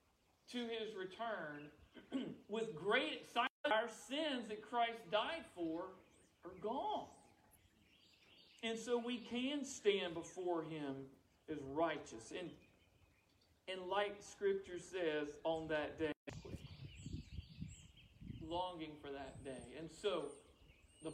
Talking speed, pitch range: 110 wpm, 140-210 Hz